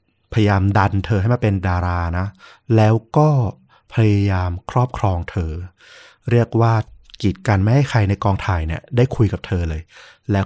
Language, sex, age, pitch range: Thai, male, 20-39, 95-115 Hz